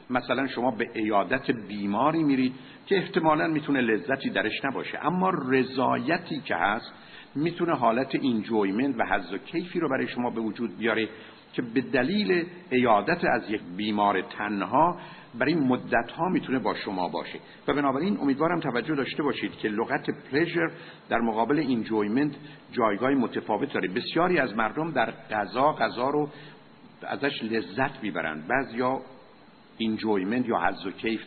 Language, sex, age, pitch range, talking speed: Persian, male, 60-79, 110-145 Hz, 140 wpm